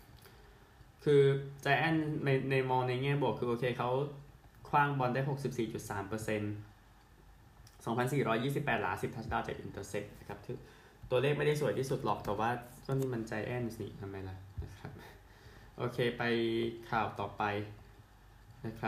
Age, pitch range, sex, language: 20-39, 110-130 Hz, male, Thai